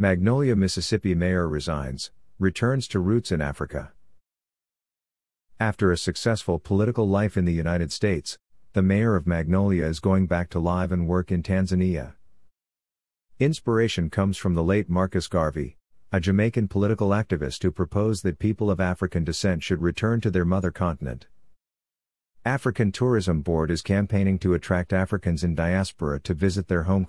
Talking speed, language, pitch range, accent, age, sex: 155 wpm, English, 85-100 Hz, American, 50-69, male